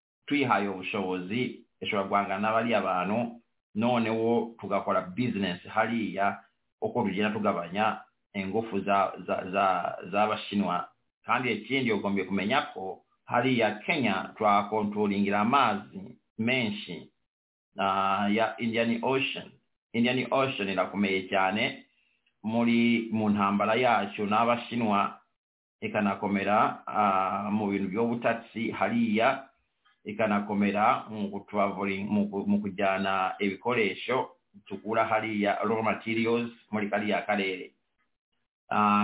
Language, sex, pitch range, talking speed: English, male, 100-115 Hz, 100 wpm